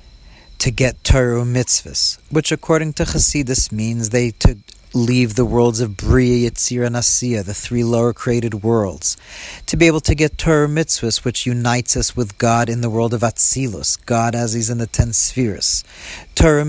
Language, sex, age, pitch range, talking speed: English, male, 40-59, 110-125 Hz, 175 wpm